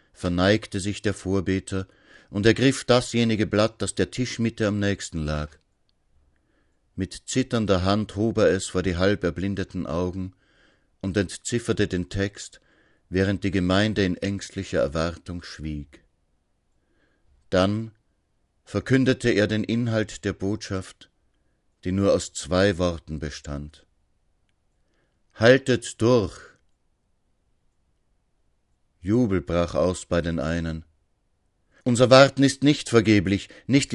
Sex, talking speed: male, 110 wpm